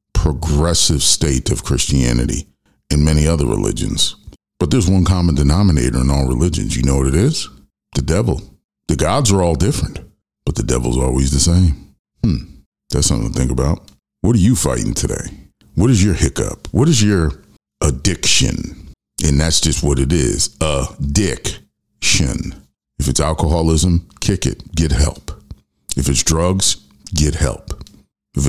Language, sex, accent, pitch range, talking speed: English, male, American, 70-90 Hz, 155 wpm